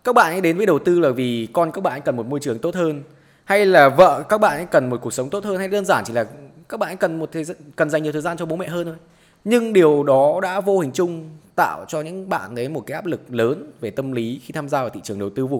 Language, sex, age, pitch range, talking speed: Vietnamese, male, 20-39, 125-175 Hz, 315 wpm